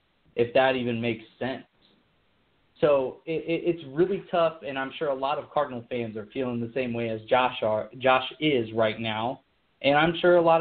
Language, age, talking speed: English, 30-49, 205 wpm